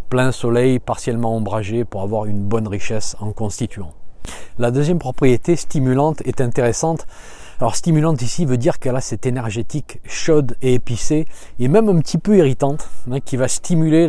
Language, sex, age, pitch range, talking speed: French, male, 40-59, 115-140 Hz, 160 wpm